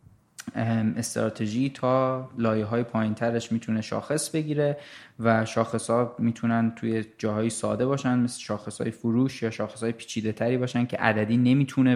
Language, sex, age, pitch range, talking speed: Persian, male, 20-39, 110-125 Hz, 130 wpm